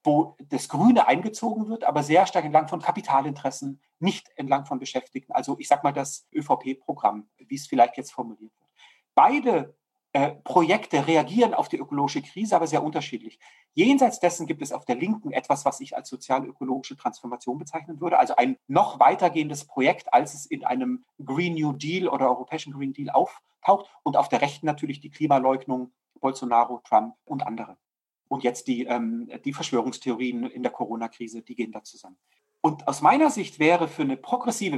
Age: 30-49